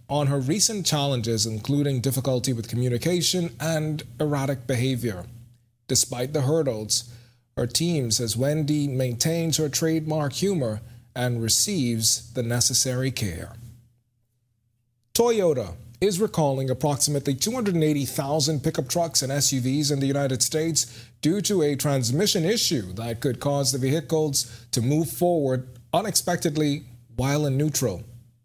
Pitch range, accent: 120-155 Hz, American